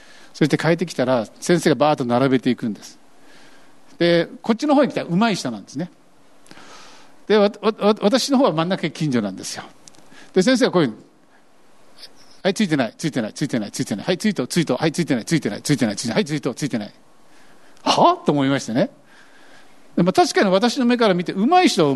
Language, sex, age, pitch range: Japanese, male, 50-69, 150-245 Hz